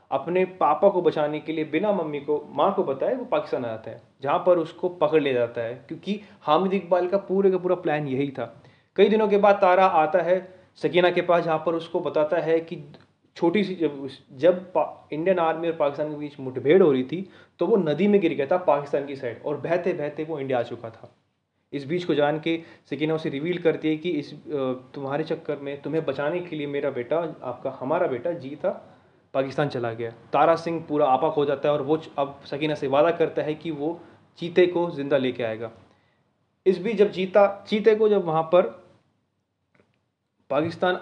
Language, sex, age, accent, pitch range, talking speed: Hindi, male, 30-49, native, 140-180 Hz, 210 wpm